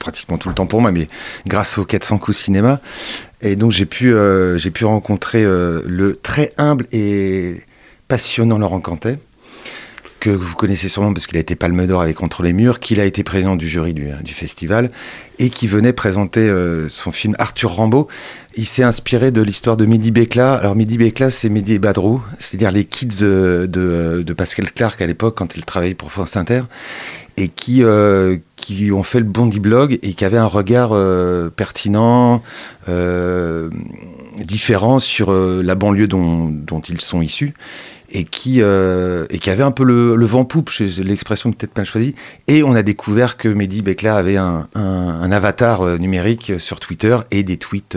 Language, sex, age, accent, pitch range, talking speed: French, male, 40-59, French, 90-115 Hz, 190 wpm